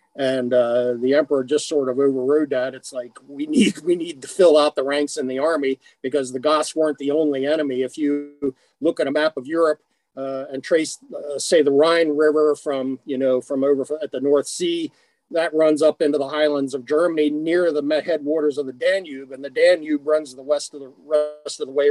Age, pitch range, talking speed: 50-69, 135-160 Hz, 225 wpm